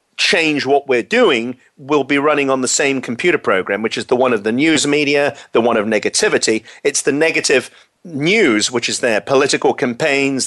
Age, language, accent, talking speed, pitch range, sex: 40-59, English, British, 190 wpm, 125-155 Hz, male